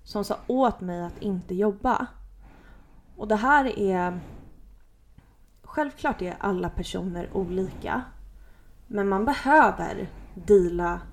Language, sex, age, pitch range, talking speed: Swedish, female, 30-49, 185-230 Hz, 110 wpm